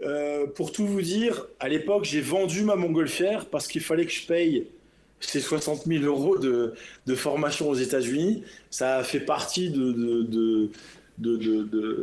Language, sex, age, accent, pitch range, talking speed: French, male, 20-39, French, 115-165 Hz, 175 wpm